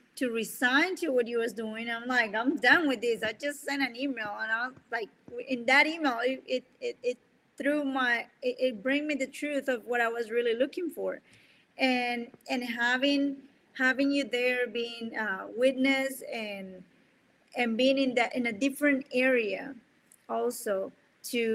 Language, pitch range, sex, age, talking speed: English, 220-265 Hz, female, 30-49, 175 wpm